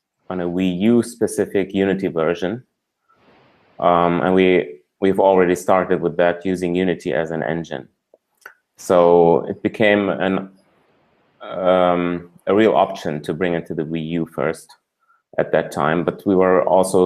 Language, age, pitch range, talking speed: English, 30-49, 85-95 Hz, 145 wpm